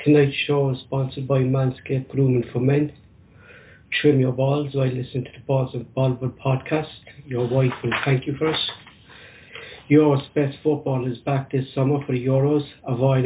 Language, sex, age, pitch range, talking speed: English, male, 60-79, 130-140 Hz, 165 wpm